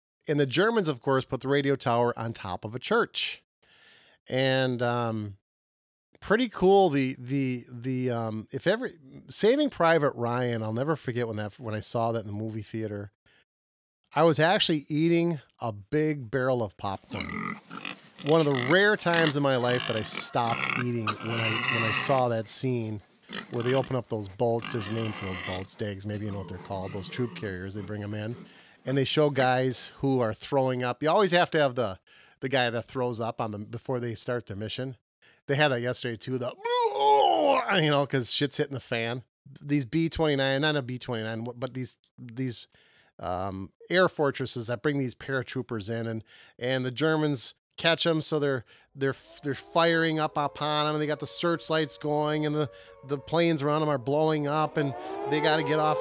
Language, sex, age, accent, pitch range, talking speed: English, male, 40-59, American, 115-150 Hz, 200 wpm